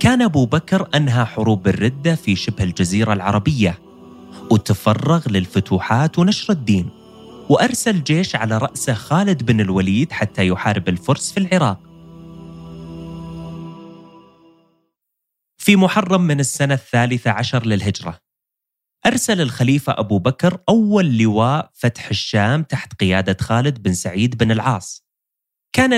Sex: male